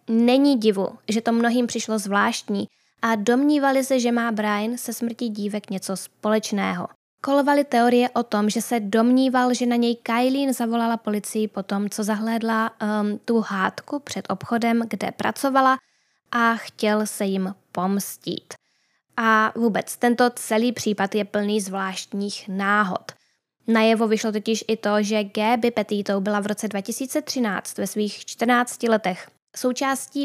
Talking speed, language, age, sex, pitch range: 145 wpm, Czech, 10-29, female, 210-235 Hz